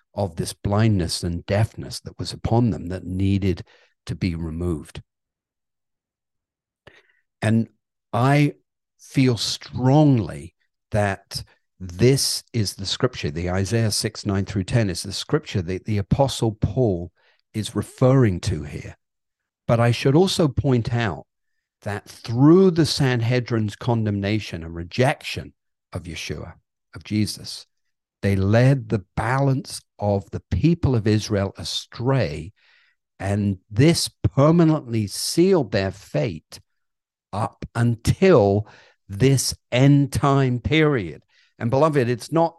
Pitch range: 100-130 Hz